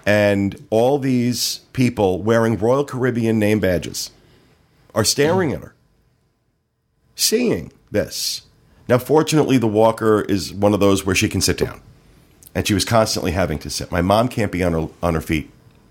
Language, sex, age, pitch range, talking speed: English, male, 50-69, 90-115 Hz, 165 wpm